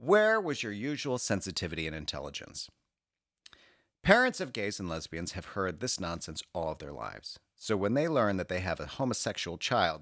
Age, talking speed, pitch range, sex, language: 50-69, 180 wpm, 85-110 Hz, male, English